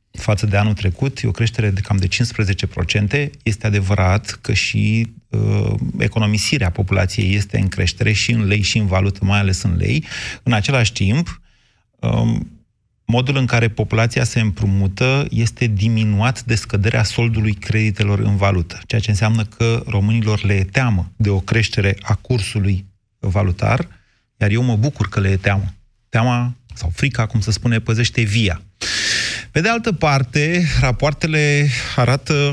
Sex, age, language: male, 30-49, Romanian